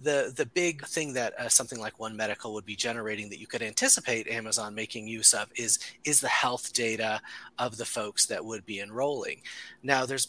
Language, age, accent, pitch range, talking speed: English, 30-49, American, 115-140 Hz, 205 wpm